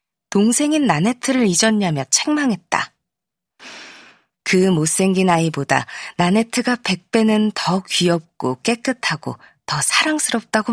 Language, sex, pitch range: Korean, female, 175-230 Hz